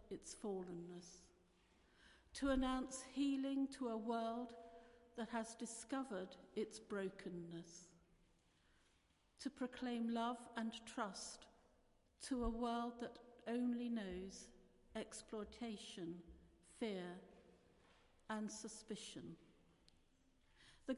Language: English